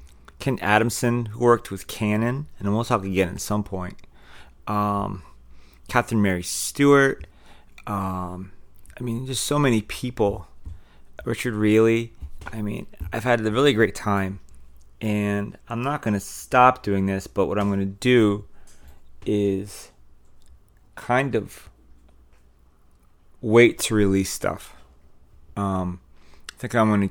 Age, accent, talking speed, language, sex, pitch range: 30-49, American, 130 wpm, English, male, 90-105 Hz